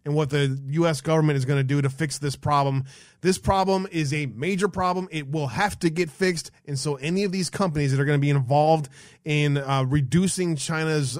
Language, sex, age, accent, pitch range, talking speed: English, male, 20-39, American, 135-160 Hz, 220 wpm